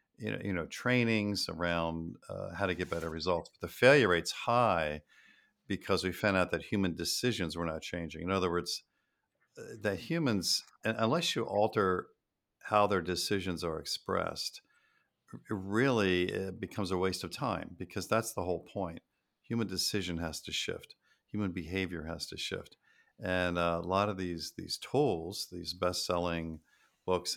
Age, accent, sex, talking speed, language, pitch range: 50-69, American, male, 160 wpm, English, 80-95 Hz